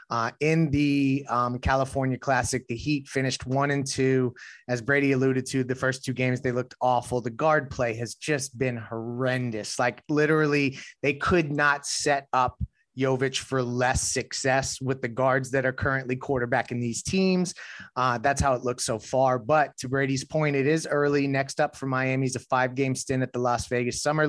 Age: 30-49